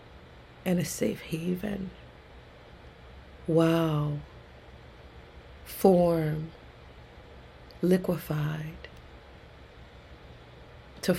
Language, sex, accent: English, female, American